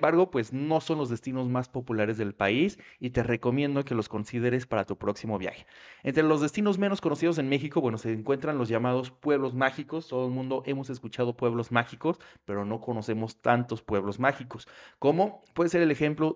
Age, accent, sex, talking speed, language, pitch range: 30-49, Mexican, male, 195 wpm, Spanish, 115-145 Hz